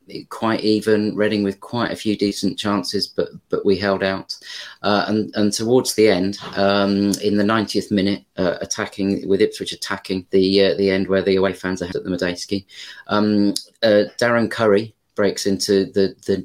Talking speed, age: 180 wpm, 30-49